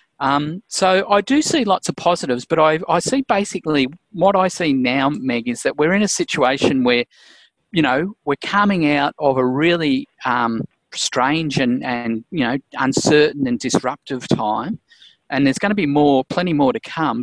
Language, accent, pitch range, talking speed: English, Australian, 130-180 Hz, 185 wpm